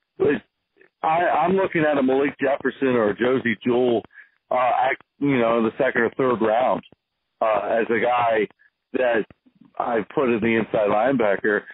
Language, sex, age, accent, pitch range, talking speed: English, male, 50-69, American, 120-150 Hz, 165 wpm